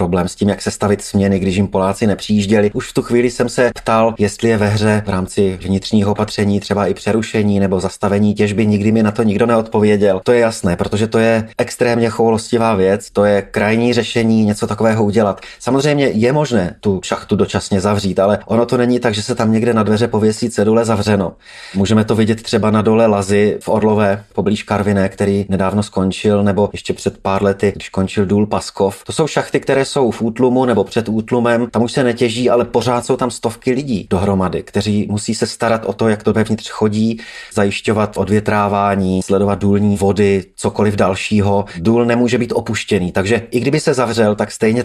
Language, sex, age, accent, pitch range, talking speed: Czech, male, 30-49, native, 100-115 Hz, 195 wpm